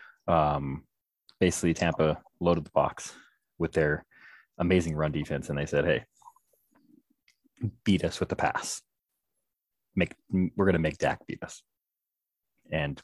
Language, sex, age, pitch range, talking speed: English, male, 30-49, 75-95 Hz, 130 wpm